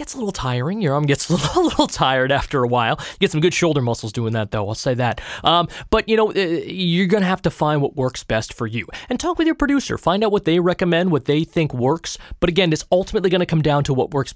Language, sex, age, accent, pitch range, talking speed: English, male, 20-39, American, 125-185 Hz, 270 wpm